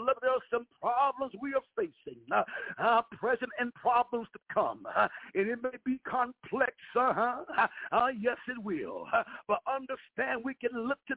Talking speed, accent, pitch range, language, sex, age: 175 wpm, American, 230-275 Hz, English, male, 60-79